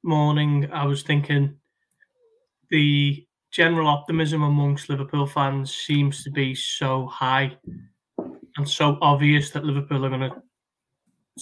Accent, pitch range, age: British, 140-155 Hz, 20-39